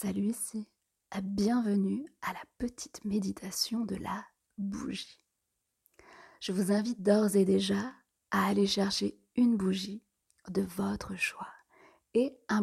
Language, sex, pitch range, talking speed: French, female, 195-230 Hz, 130 wpm